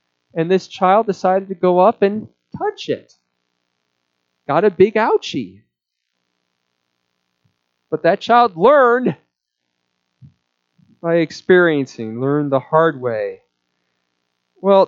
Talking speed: 100 wpm